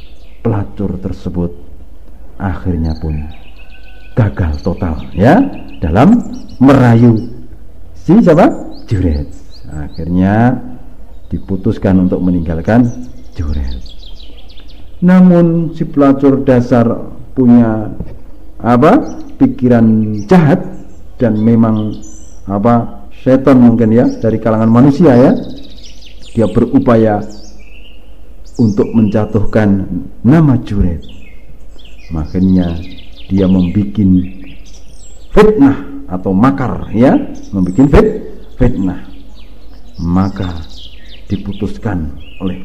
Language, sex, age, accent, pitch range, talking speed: Indonesian, male, 50-69, native, 80-115 Hz, 75 wpm